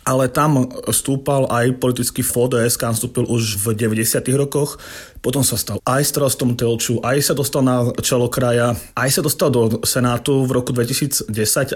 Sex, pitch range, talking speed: male, 115-135 Hz, 170 wpm